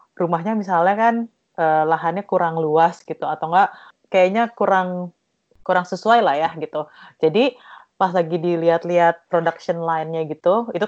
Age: 30-49